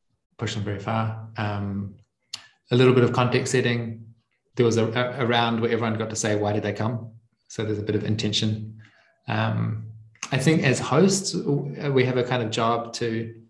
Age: 20-39